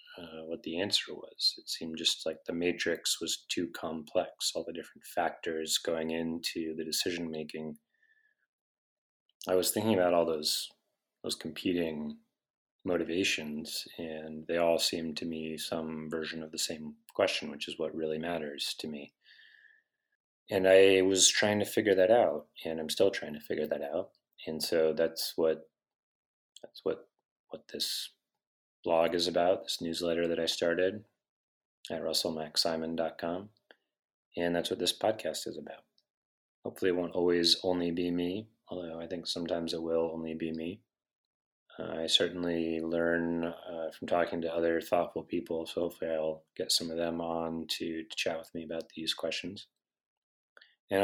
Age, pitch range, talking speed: 30-49, 80-85 Hz, 160 wpm